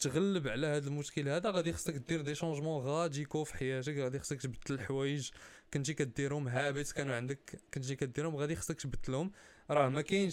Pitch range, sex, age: 135-170 Hz, male, 20-39